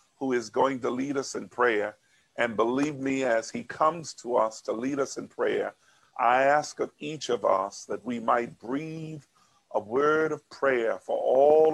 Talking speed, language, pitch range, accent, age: 190 wpm, English, 115-145 Hz, American, 50-69